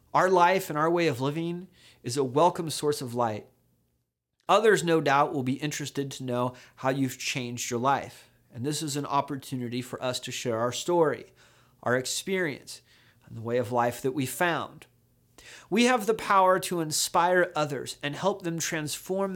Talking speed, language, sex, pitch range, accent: 180 wpm, English, male, 130-180 Hz, American